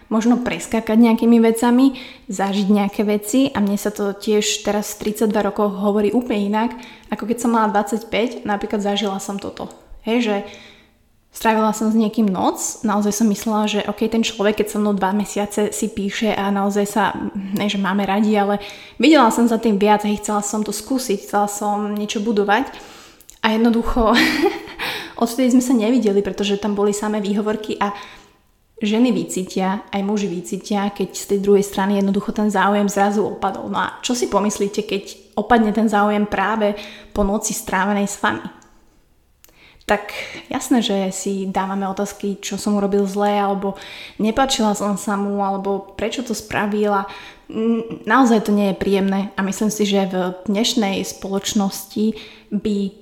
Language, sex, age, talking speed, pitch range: Slovak, female, 20-39, 165 wpm, 200-220 Hz